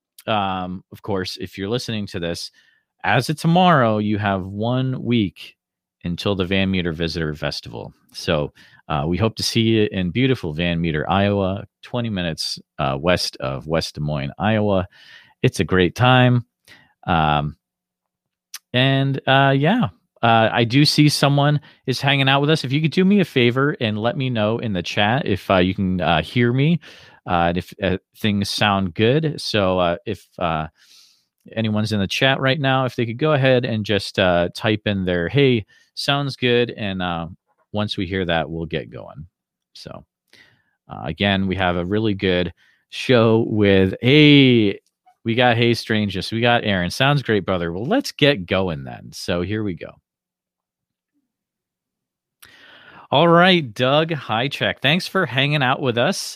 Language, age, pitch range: English, 40-59, 95-130 Hz